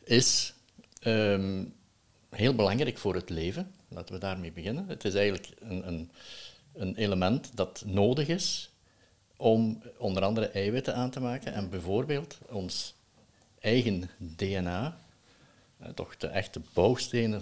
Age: 60-79